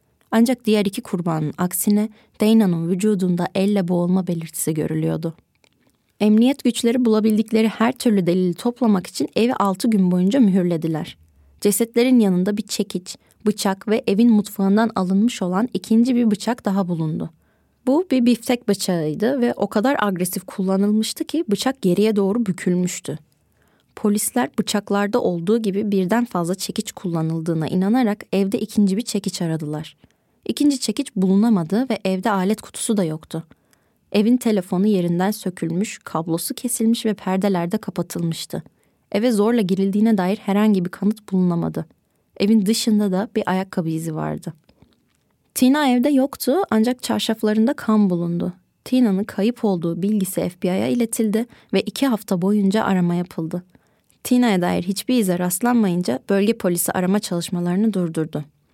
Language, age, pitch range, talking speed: Turkish, 30-49, 180-225 Hz, 130 wpm